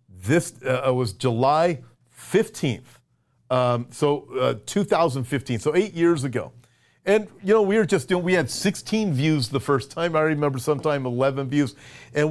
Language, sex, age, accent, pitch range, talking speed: English, male, 50-69, American, 130-155 Hz, 155 wpm